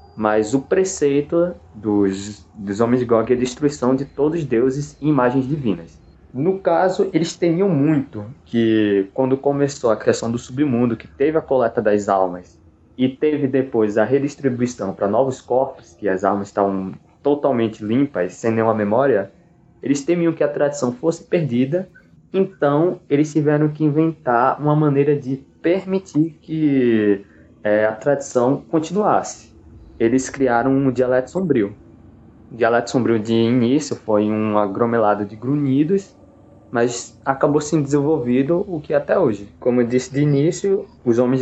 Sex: male